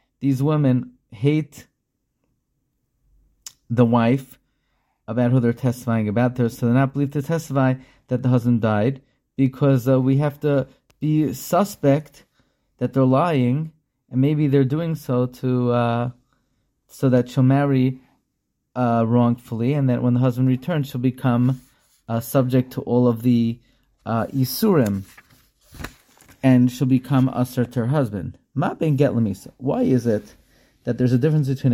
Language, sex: English, male